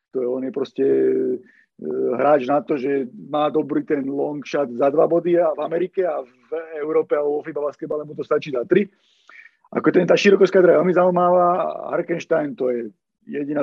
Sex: male